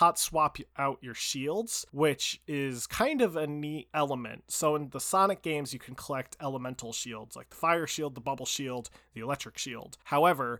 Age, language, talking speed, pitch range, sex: 30-49, English, 185 wpm, 125-155 Hz, male